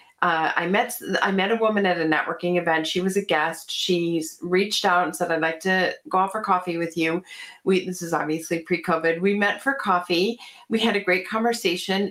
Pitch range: 180-230 Hz